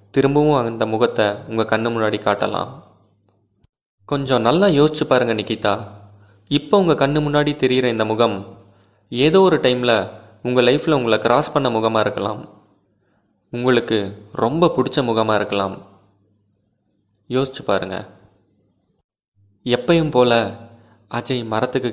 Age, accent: 20-39, native